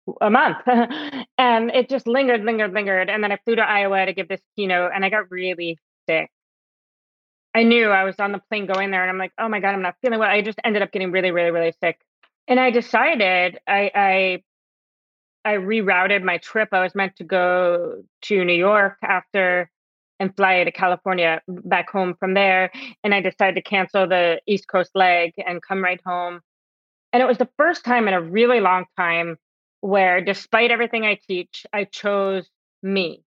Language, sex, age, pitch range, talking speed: English, female, 30-49, 185-220 Hz, 200 wpm